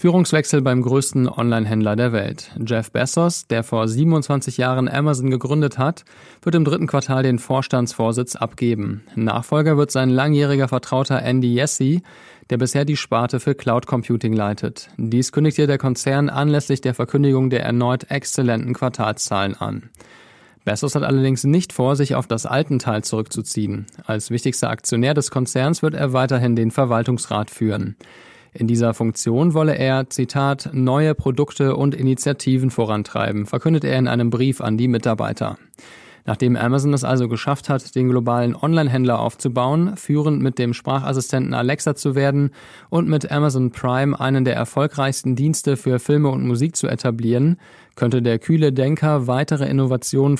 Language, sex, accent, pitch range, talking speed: German, male, German, 120-145 Hz, 150 wpm